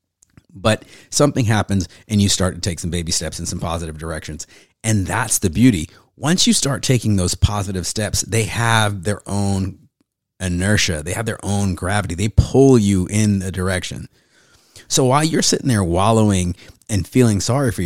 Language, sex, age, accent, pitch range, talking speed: English, male, 30-49, American, 90-115 Hz, 175 wpm